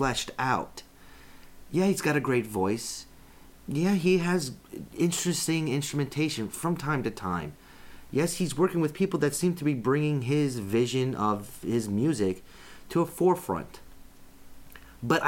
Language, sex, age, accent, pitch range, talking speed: English, male, 30-49, American, 100-150 Hz, 140 wpm